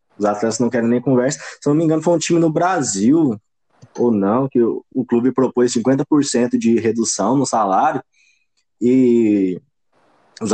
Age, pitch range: 20-39, 120-160 Hz